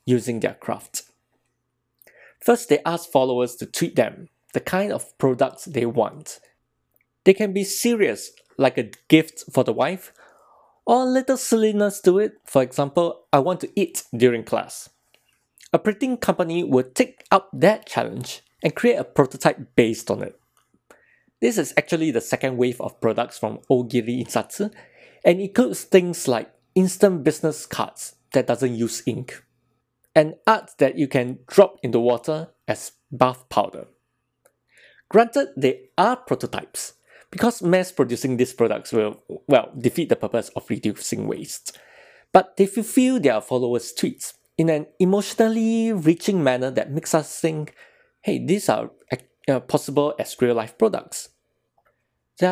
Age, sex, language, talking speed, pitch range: 20-39, male, English, 145 wpm, 125-200 Hz